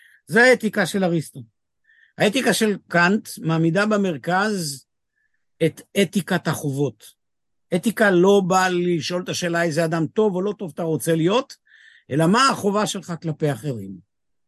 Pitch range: 160-215 Hz